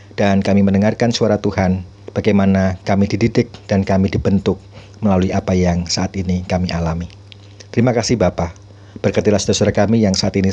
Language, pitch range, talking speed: Indonesian, 95-110 Hz, 155 wpm